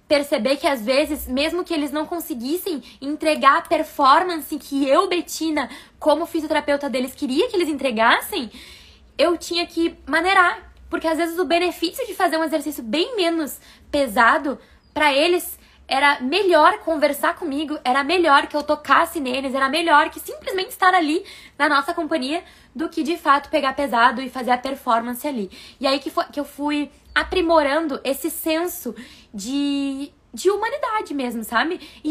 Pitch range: 270-335 Hz